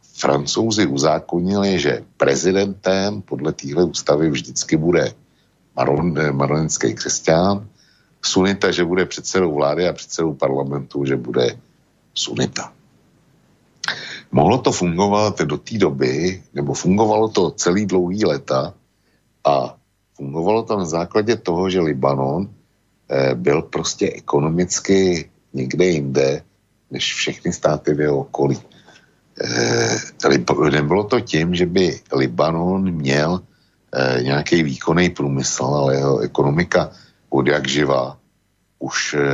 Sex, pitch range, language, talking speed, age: male, 70-90 Hz, Slovak, 110 wpm, 60-79